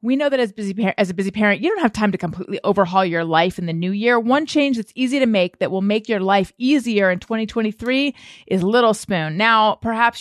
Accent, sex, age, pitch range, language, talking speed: American, female, 30-49, 185-225 Hz, English, 245 wpm